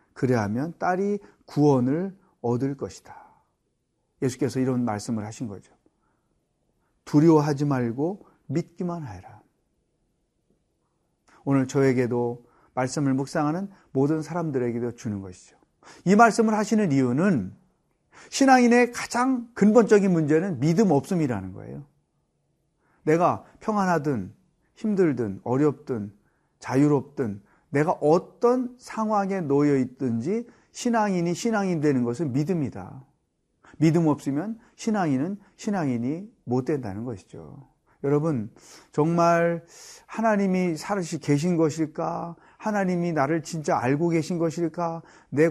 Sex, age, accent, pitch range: male, 40-59, native, 135-185 Hz